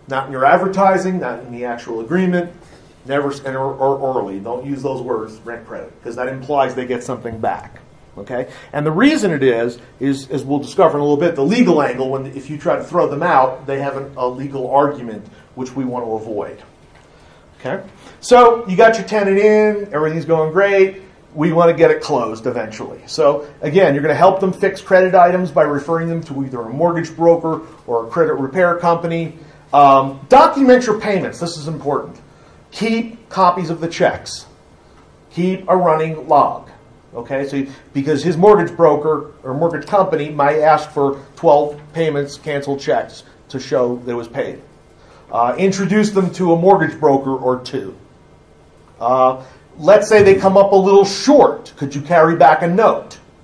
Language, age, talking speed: English, 40-59, 185 wpm